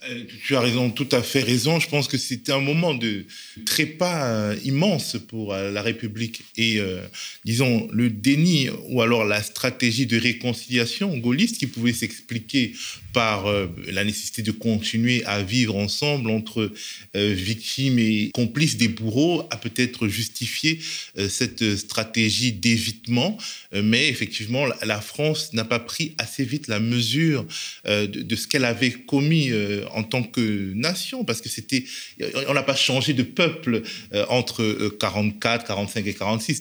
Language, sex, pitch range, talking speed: French, male, 110-140 Hz, 155 wpm